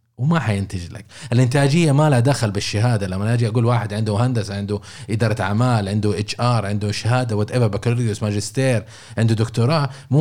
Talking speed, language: 165 wpm, Arabic